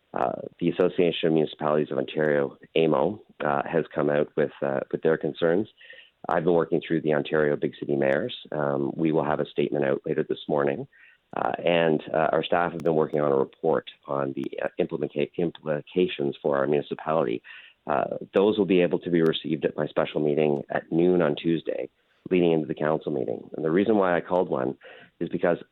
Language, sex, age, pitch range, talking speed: English, male, 40-59, 70-85 Hz, 195 wpm